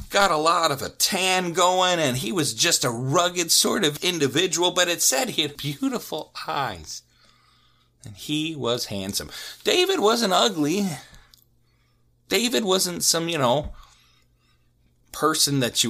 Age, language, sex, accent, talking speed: 40-59, English, male, American, 145 wpm